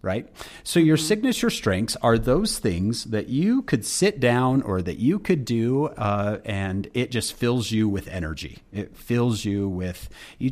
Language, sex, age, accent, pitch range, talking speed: English, male, 30-49, American, 100-125 Hz, 175 wpm